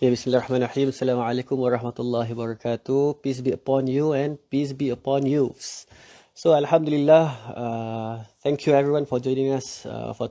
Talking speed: 145 wpm